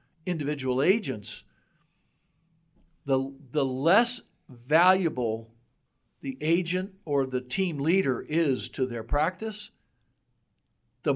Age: 60-79